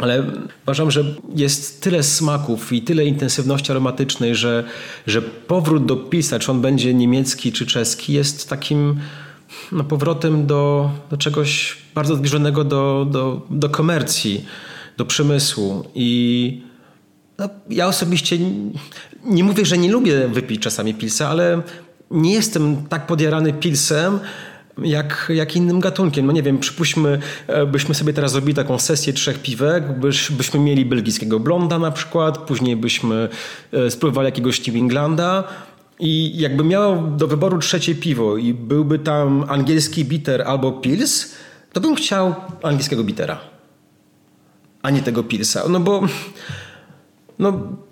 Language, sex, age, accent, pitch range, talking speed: Polish, male, 30-49, native, 135-165 Hz, 135 wpm